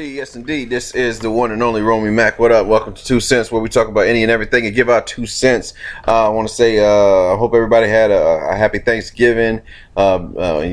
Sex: male